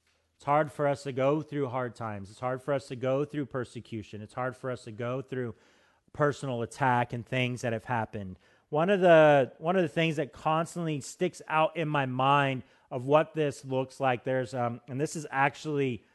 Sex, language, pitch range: male, English, 120-140 Hz